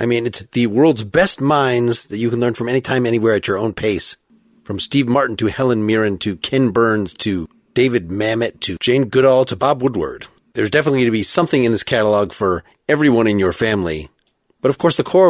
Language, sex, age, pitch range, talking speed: English, male, 40-59, 110-140 Hz, 215 wpm